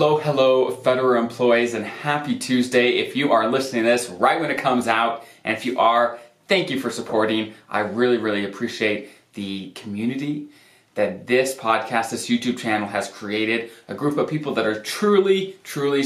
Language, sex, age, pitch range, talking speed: English, male, 20-39, 105-130 Hz, 180 wpm